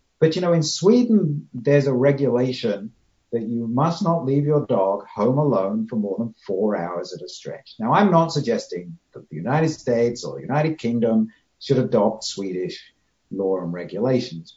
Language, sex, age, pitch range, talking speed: English, male, 60-79, 125-190 Hz, 175 wpm